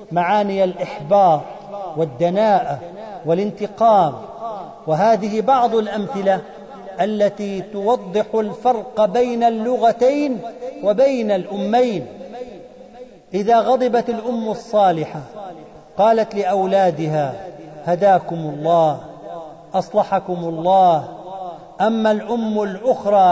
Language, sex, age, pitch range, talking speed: Arabic, male, 40-59, 180-230 Hz, 70 wpm